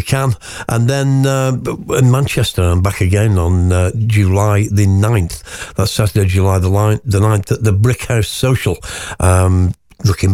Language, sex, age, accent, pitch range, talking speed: English, male, 60-79, British, 95-115 Hz, 145 wpm